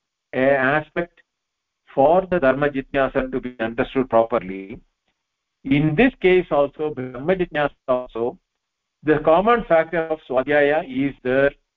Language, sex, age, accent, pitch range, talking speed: English, male, 50-69, Indian, 125-165 Hz, 115 wpm